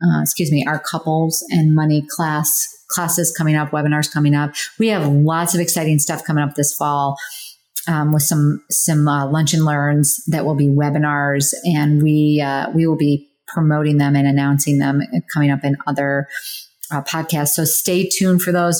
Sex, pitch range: female, 150-185 Hz